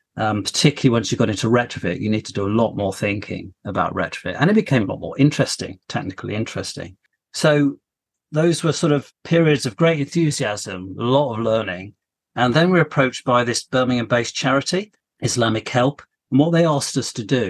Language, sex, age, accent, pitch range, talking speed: English, male, 40-59, British, 110-145 Hz, 195 wpm